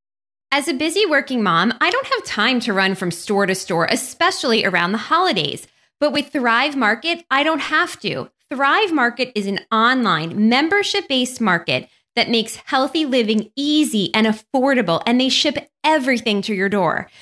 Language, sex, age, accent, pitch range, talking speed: English, female, 20-39, American, 215-285 Hz, 165 wpm